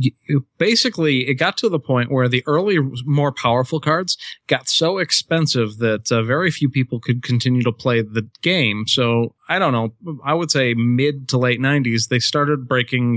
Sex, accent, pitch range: male, American, 115-145 Hz